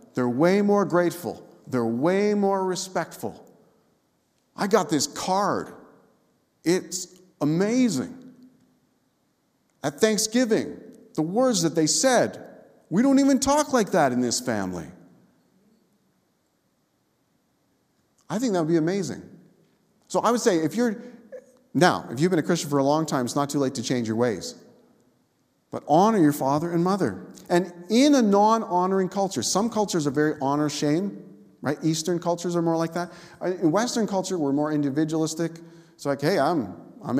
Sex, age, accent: male, 50-69, American